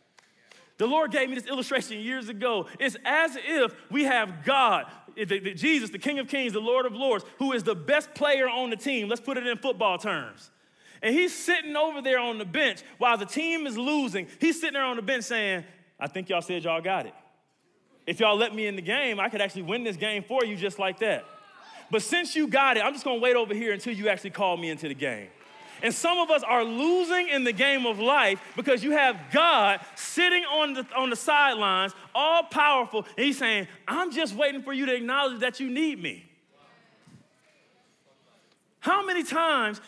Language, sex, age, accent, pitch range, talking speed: English, male, 30-49, American, 220-295 Hz, 210 wpm